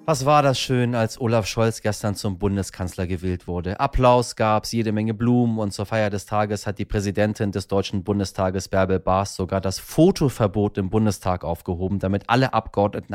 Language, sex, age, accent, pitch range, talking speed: German, male, 30-49, German, 105-145 Hz, 185 wpm